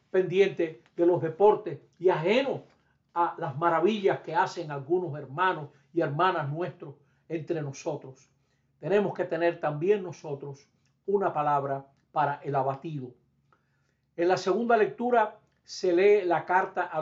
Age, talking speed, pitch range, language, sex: 60-79, 130 wpm, 145-185 Hz, Spanish, male